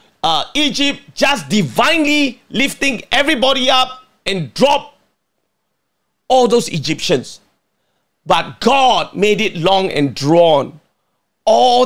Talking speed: 100 wpm